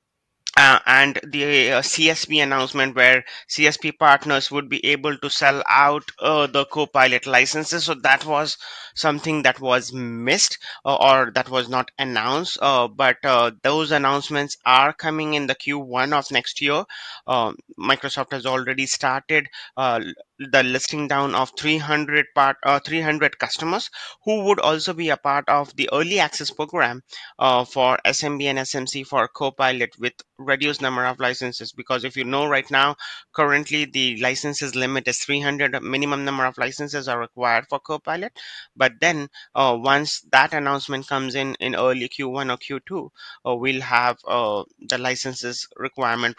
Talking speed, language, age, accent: 155 wpm, English, 30-49, Indian